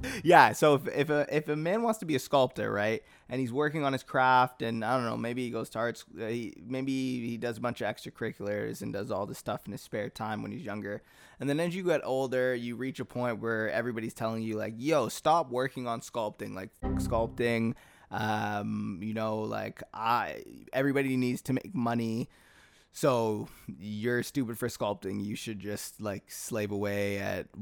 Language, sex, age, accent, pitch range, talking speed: English, male, 20-39, American, 110-130 Hz, 200 wpm